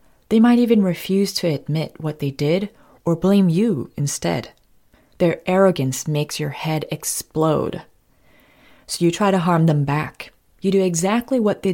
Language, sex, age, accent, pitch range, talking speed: English, female, 30-49, American, 145-195 Hz, 160 wpm